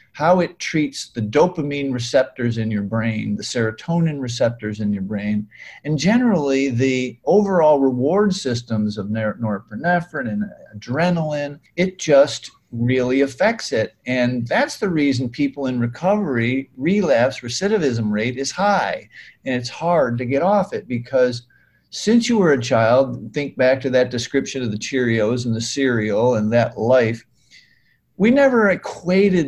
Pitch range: 120-170 Hz